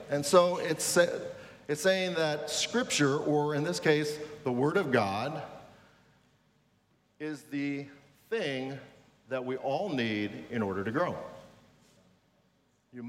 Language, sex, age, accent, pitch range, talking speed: English, male, 40-59, American, 125-160 Hz, 125 wpm